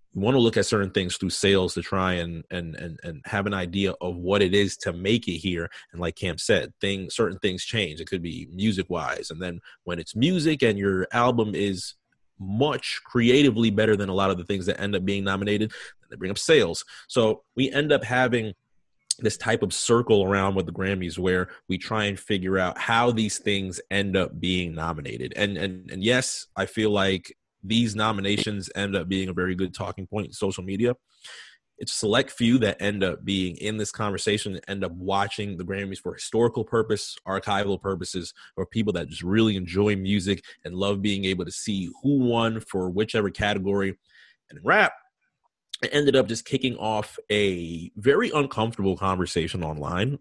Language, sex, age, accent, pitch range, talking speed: English, male, 30-49, American, 95-110 Hz, 200 wpm